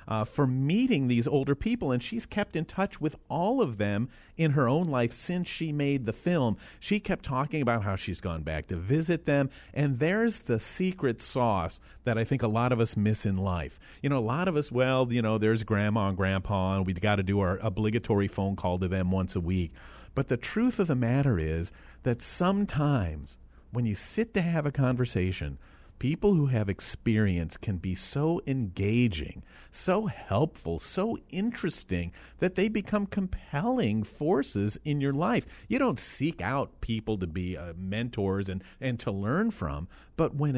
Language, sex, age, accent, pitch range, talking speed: English, male, 40-59, American, 90-140 Hz, 190 wpm